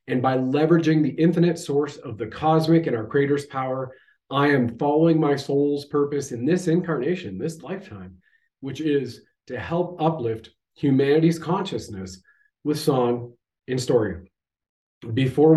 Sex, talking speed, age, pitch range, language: male, 140 wpm, 40-59, 120-155 Hz, English